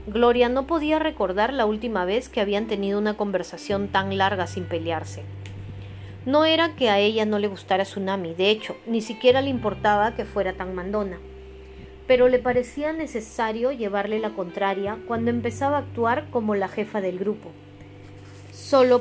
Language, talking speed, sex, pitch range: Spanish, 165 wpm, female, 185-245 Hz